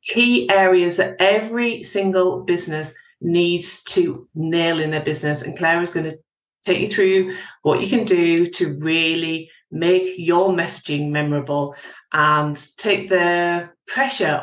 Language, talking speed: English, 140 wpm